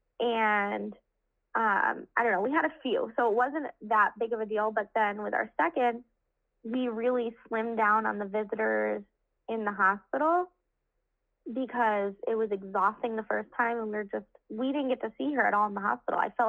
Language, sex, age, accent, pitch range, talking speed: English, female, 20-39, American, 210-250 Hz, 200 wpm